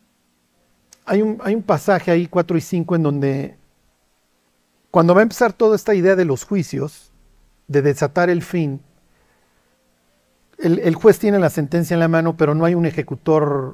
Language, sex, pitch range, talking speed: Spanish, male, 150-205 Hz, 165 wpm